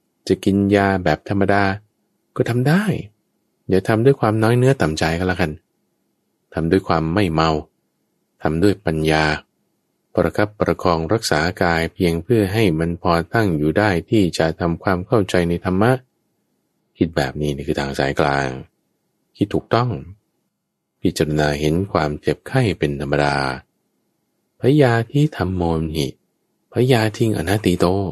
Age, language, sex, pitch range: 20-39, English, male, 75-110 Hz